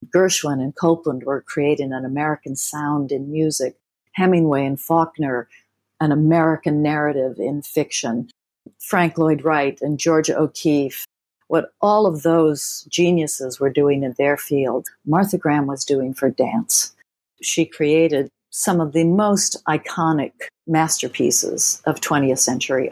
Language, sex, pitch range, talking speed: English, female, 140-165 Hz, 135 wpm